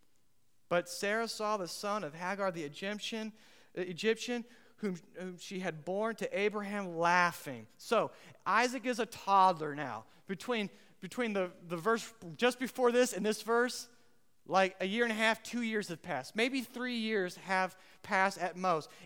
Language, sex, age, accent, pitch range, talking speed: English, male, 30-49, American, 155-210 Hz, 165 wpm